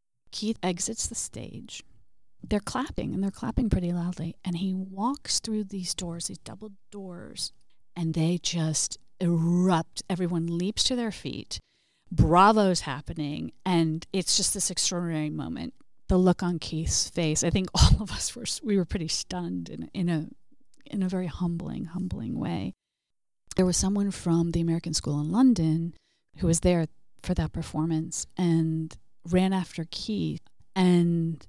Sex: female